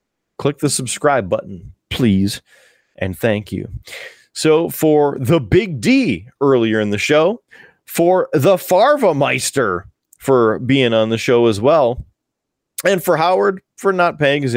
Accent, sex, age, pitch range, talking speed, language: American, male, 30-49, 115-190 Hz, 145 wpm, English